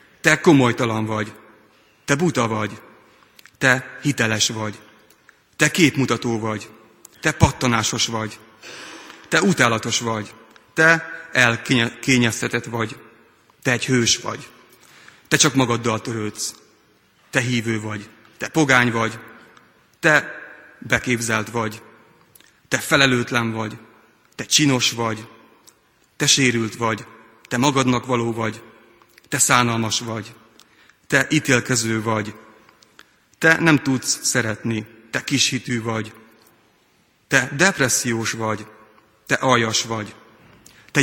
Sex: male